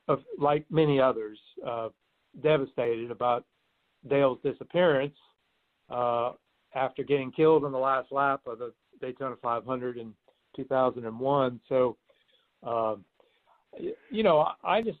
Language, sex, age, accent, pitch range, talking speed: English, male, 60-79, American, 125-155 Hz, 110 wpm